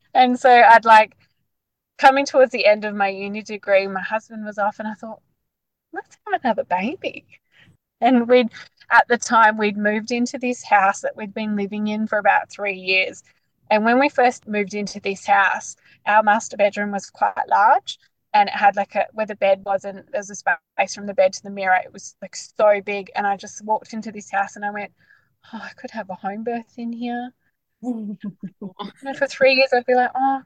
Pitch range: 195-245 Hz